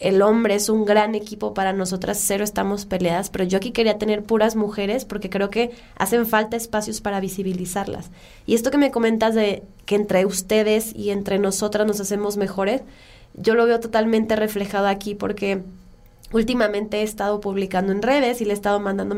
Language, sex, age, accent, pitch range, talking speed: Spanish, female, 20-39, Mexican, 200-235 Hz, 185 wpm